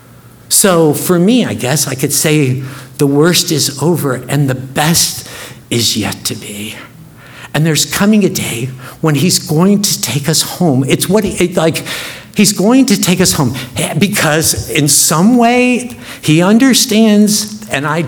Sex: male